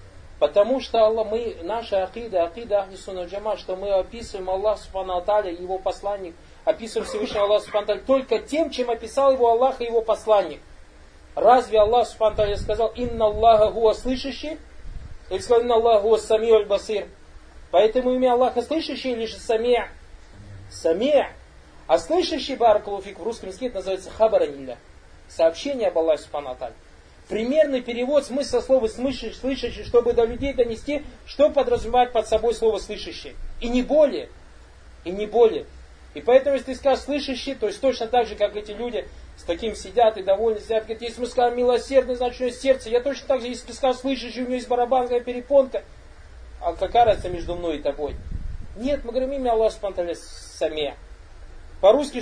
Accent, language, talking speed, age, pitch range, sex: native, Russian, 155 wpm, 30-49, 185-250 Hz, male